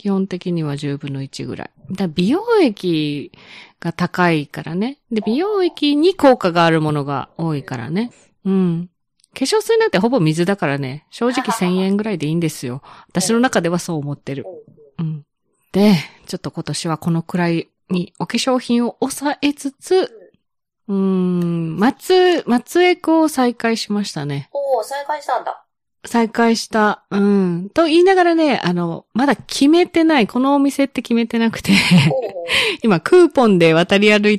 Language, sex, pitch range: Japanese, female, 170-270 Hz